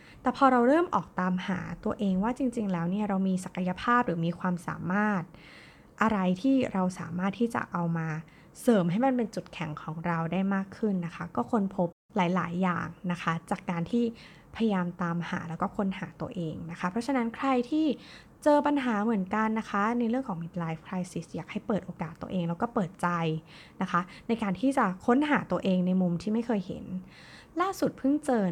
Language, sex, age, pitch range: Thai, female, 20-39, 175-220 Hz